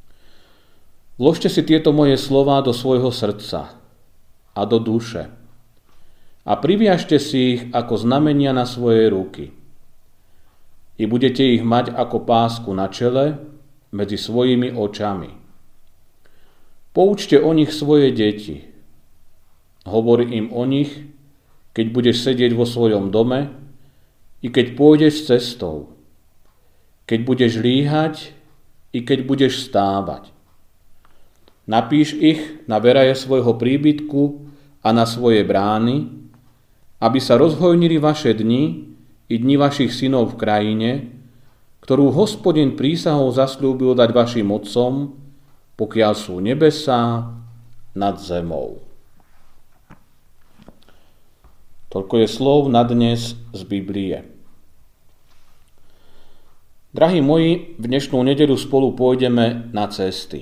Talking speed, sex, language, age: 105 wpm, male, Slovak, 40-59